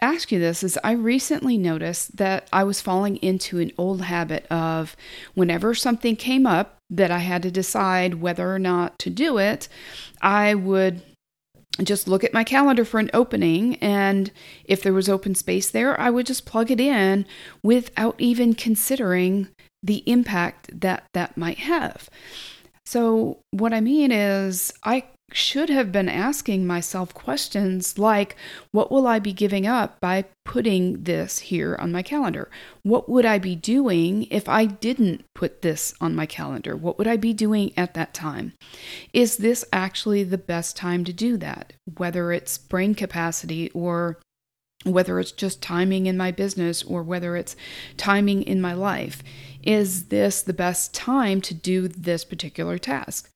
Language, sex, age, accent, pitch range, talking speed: English, female, 40-59, American, 175-225 Hz, 165 wpm